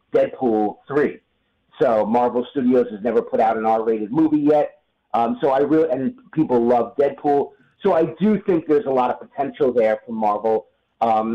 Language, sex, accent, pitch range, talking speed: English, male, American, 125-155 Hz, 180 wpm